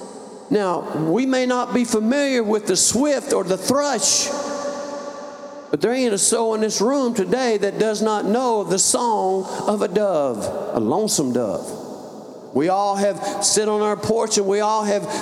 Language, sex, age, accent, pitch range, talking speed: English, male, 50-69, American, 220-285 Hz, 175 wpm